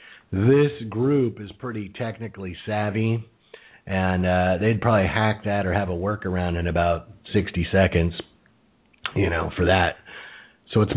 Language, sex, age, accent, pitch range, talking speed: English, male, 40-59, American, 90-120 Hz, 140 wpm